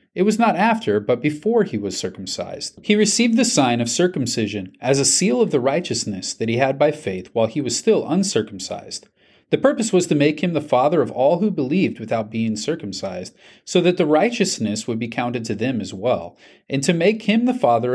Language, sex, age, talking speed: English, male, 40-59, 210 wpm